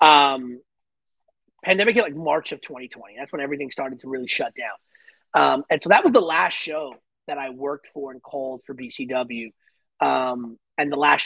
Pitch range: 135-180 Hz